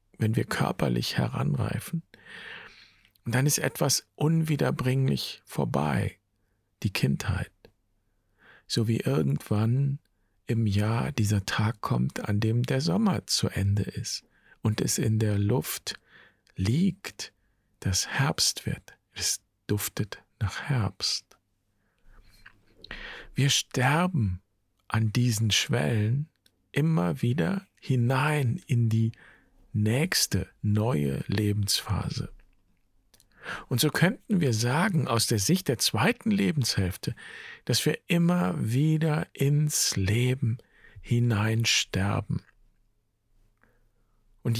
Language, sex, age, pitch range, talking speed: German, male, 50-69, 105-140 Hz, 95 wpm